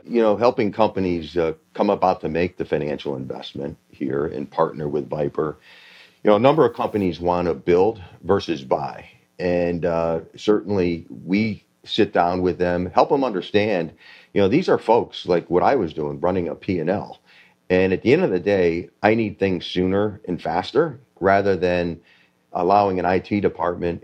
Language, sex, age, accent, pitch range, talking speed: English, male, 40-59, American, 85-100 Hz, 180 wpm